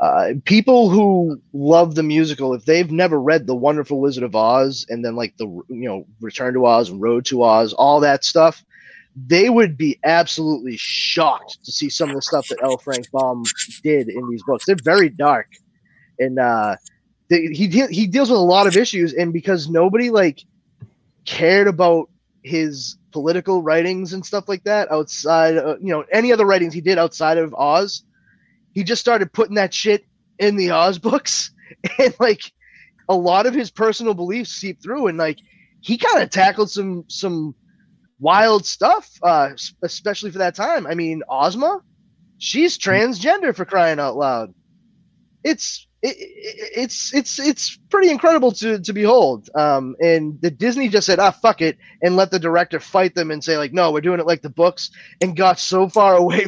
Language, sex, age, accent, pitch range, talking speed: English, male, 20-39, American, 150-205 Hz, 180 wpm